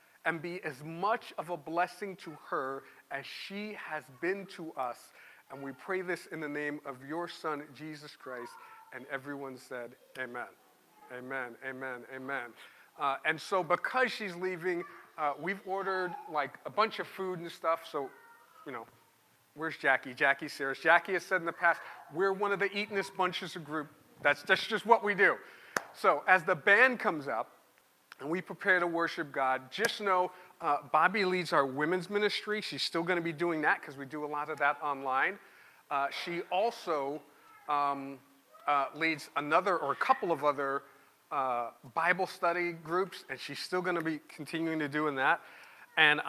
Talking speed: 180 wpm